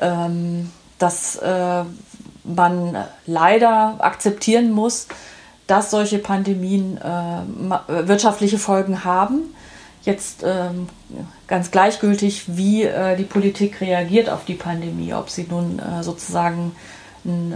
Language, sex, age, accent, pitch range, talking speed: German, female, 30-49, German, 175-205 Hz, 90 wpm